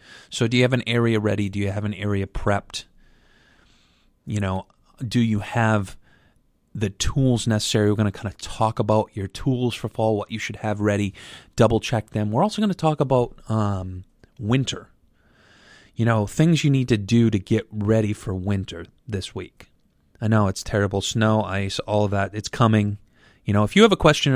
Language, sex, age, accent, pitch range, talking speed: English, male, 30-49, American, 100-115 Hz, 195 wpm